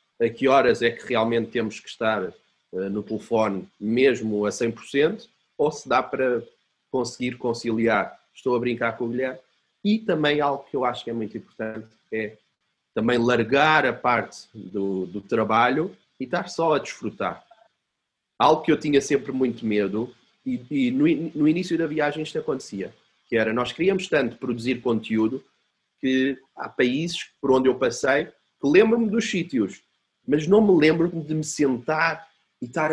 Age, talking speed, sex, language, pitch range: 30-49, 170 wpm, male, Portuguese, 115-155 Hz